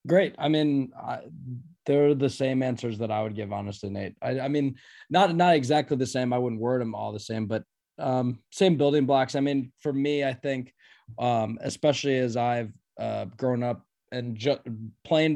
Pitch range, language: 110-135 Hz, English